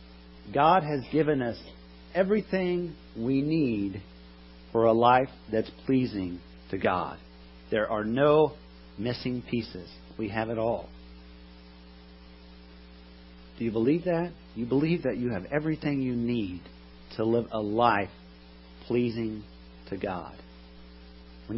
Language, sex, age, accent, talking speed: English, male, 50-69, American, 120 wpm